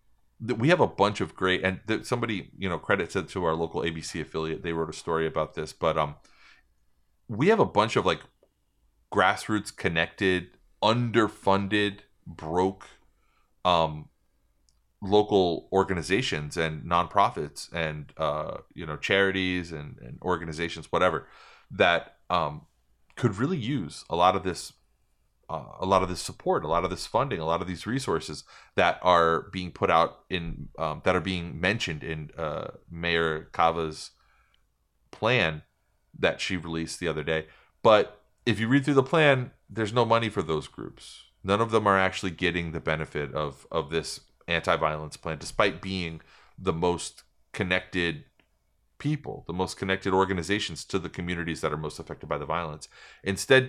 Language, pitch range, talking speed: English, 80-100 Hz, 160 wpm